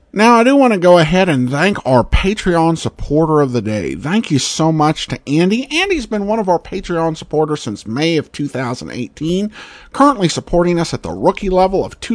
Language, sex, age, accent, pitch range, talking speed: English, male, 50-69, American, 140-210 Hz, 200 wpm